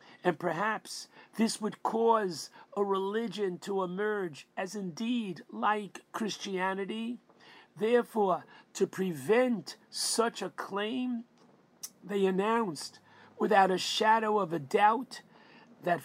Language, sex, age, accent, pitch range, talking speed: English, male, 50-69, American, 165-205 Hz, 105 wpm